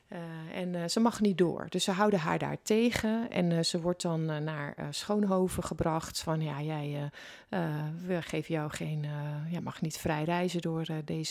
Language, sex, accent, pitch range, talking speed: Dutch, female, Dutch, 155-185 Hz, 205 wpm